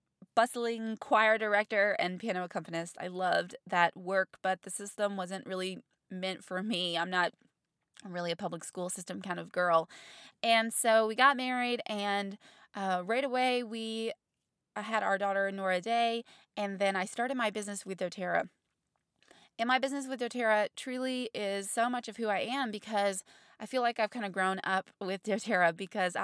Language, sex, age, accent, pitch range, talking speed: English, female, 20-39, American, 185-225 Hz, 175 wpm